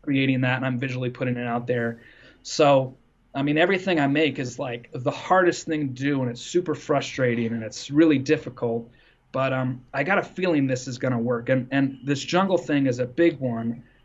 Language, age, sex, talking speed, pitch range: English, 30-49, male, 215 wpm, 120-145 Hz